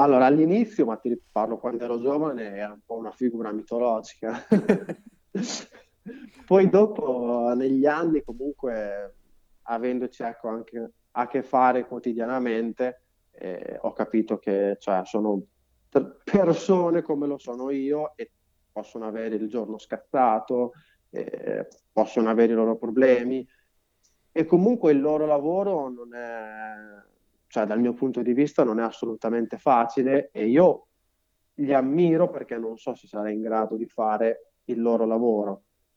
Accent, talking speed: native, 135 wpm